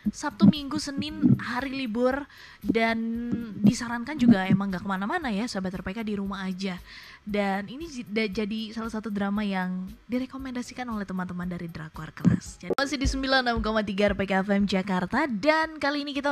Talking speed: 160 wpm